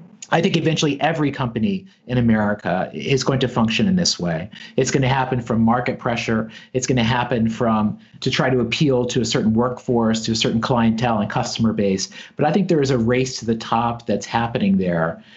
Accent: American